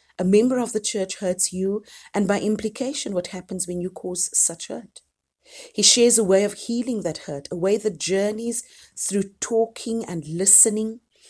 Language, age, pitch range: English, 40-59, 160-215 Hz